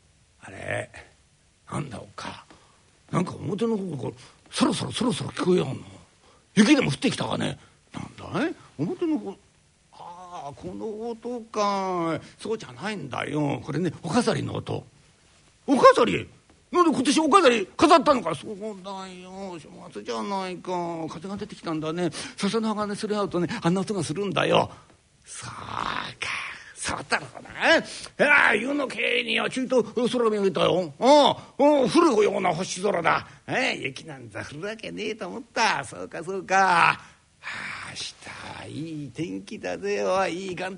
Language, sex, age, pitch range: Japanese, male, 60-79, 180-265 Hz